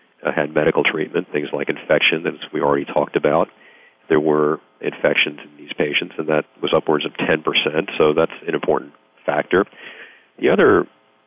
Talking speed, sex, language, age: 165 wpm, male, English, 40-59